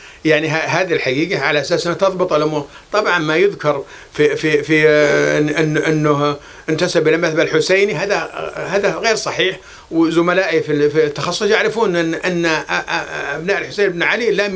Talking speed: 150 wpm